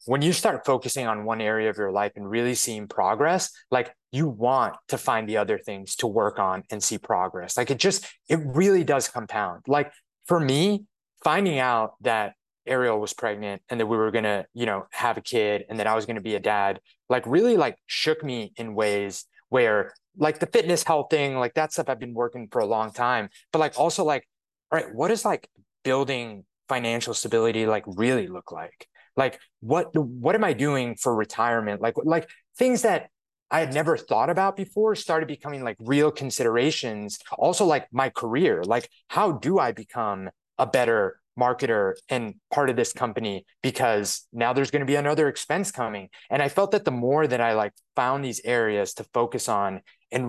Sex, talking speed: male, 200 wpm